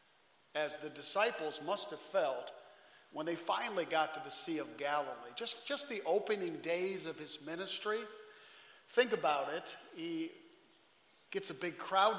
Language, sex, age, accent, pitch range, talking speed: English, male, 50-69, American, 180-255 Hz, 155 wpm